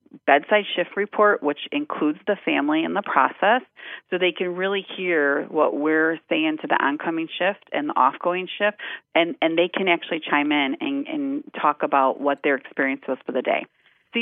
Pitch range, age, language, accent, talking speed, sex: 145-190 Hz, 40-59, English, American, 190 wpm, female